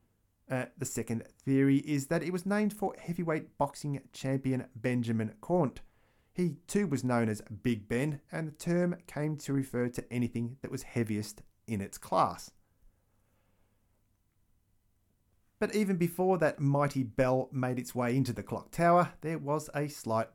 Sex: male